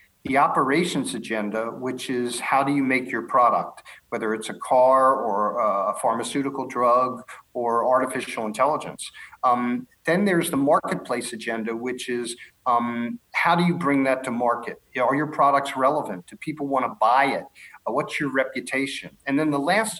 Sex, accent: male, American